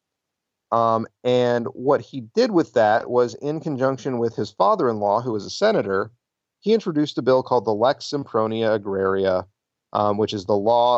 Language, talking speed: English, 170 wpm